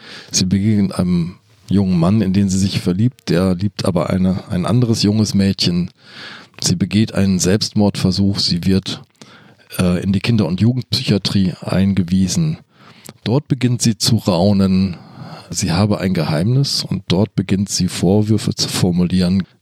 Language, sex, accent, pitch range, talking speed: German, male, German, 95-125 Hz, 145 wpm